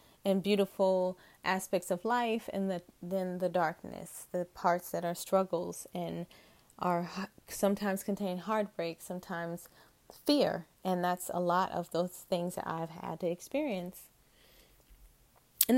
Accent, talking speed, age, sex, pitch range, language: American, 125 wpm, 20-39, female, 180-225 Hz, English